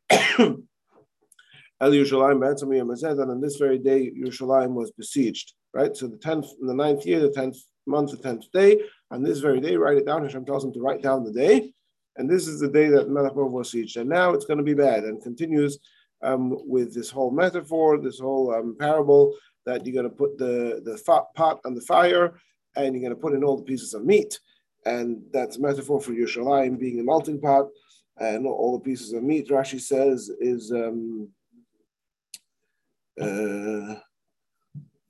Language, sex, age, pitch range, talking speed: English, male, 40-59, 125-150 Hz, 185 wpm